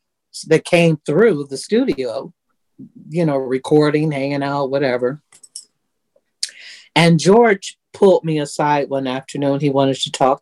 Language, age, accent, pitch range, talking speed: English, 50-69, American, 140-190 Hz, 125 wpm